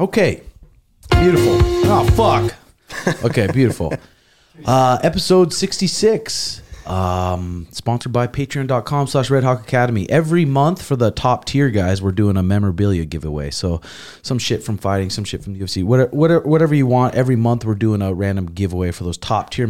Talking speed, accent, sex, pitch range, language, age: 160 wpm, American, male, 95-125 Hz, English, 30-49